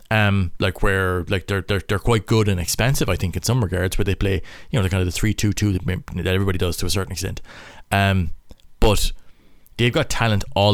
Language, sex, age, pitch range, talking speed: English, male, 30-49, 95-110 Hz, 230 wpm